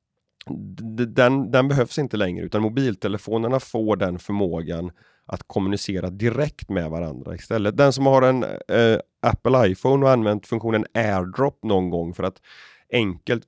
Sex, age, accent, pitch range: male, 30-49, native, 95-120 Hz